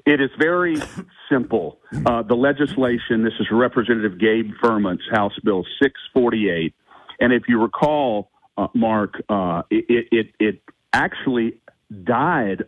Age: 50-69